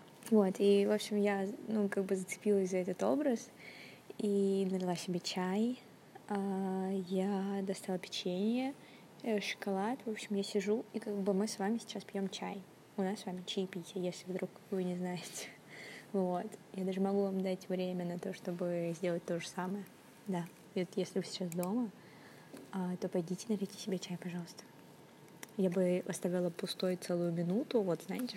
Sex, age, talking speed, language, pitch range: female, 20-39, 165 wpm, Russian, 180-200 Hz